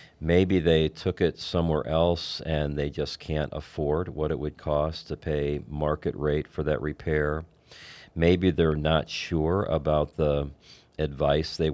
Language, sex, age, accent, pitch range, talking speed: English, male, 40-59, American, 75-80 Hz, 155 wpm